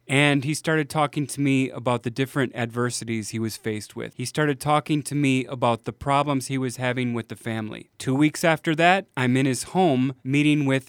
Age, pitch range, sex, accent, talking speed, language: 30-49, 125-160 Hz, male, American, 210 wpm, English